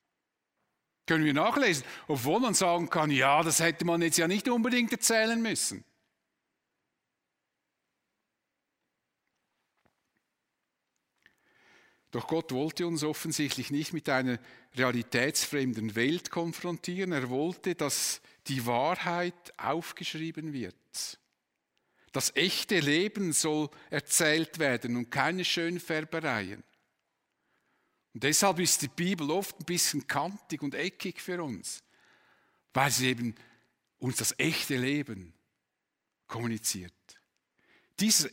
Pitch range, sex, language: 130-180 Hz, male, German